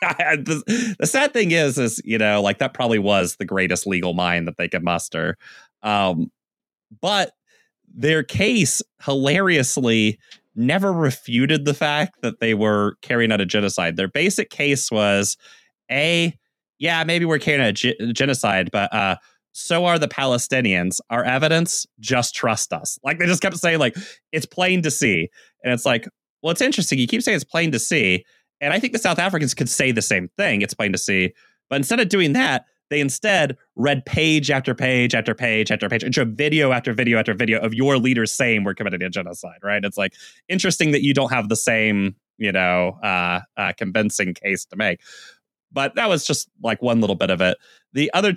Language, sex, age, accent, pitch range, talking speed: English, male, 30-49, American, 105-155 Hz, 195 wpm